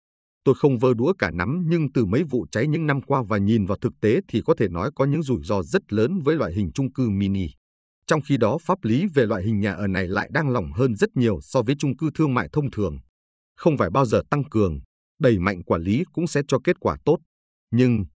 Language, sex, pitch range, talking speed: Vietnamese, male, 95-140 Hz, 255 wpm